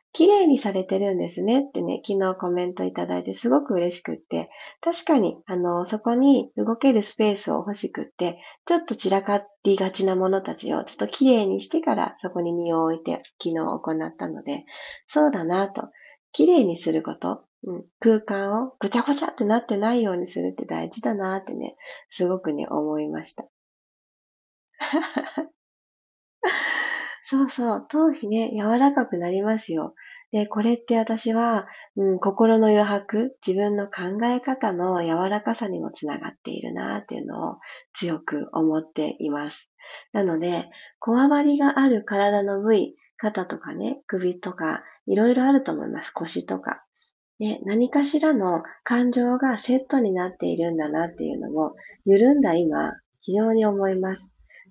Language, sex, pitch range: Japanese, female, 180-260 Hz